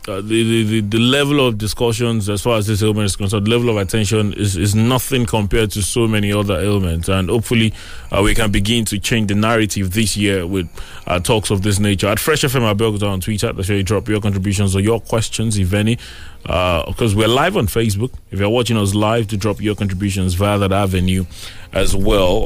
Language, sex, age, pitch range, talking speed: English, male, 20-39, 95-115 Hz, 215 wpm